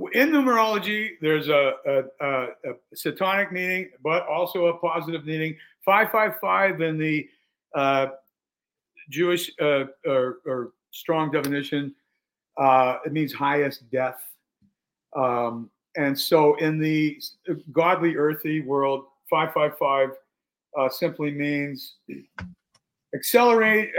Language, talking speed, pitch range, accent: English, 115 wpm, 140-175 Hz, American